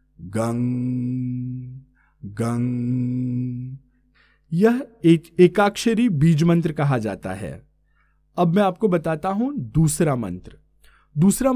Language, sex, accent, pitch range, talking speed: Hindi, male, native, 140-185 Hz, 95 wpm